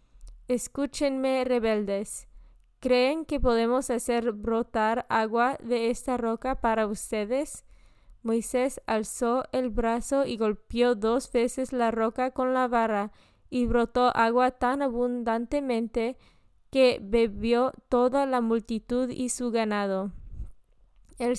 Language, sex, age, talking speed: Spanish, female, 20-39, 110 wpm